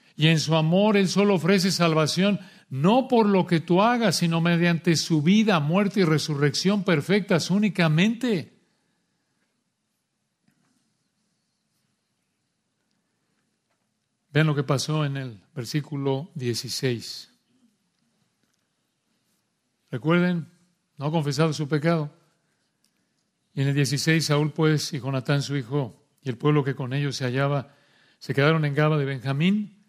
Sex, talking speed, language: male, 120 wpm, Spanish